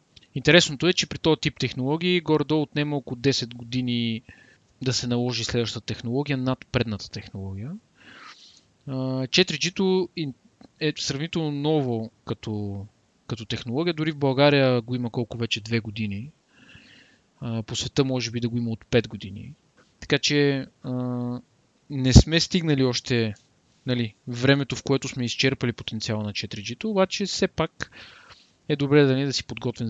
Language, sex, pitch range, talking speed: Bulgarian, male, 120-150 Hz, 145 wpm